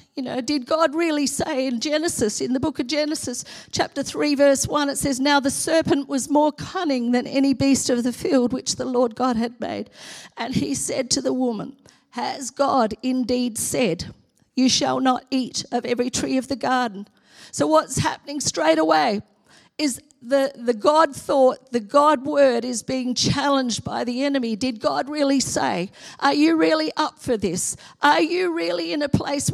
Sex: female